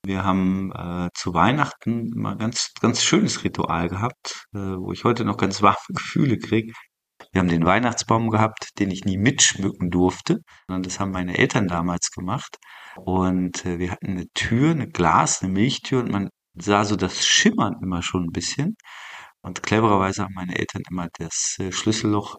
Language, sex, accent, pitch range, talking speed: German, male, German, 90-115 Hz, 175 wpm